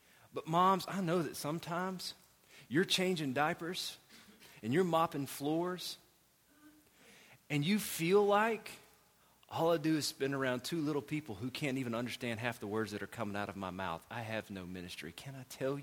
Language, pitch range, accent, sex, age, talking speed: English, 110-160 Hz, American, male, 40-59, 180 wpm